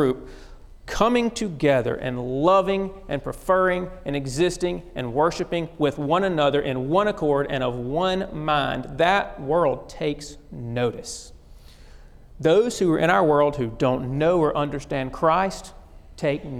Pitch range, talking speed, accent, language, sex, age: 130-175 Hz, 135 wpm, American, English, male, 40-59